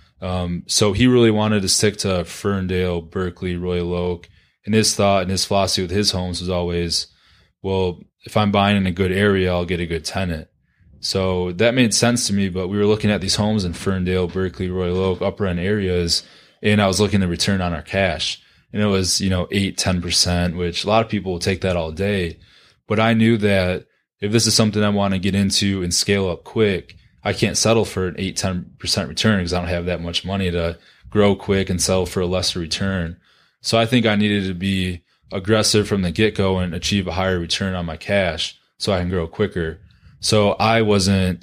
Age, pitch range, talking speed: 20-39, 90-100 Hz, 220 wpm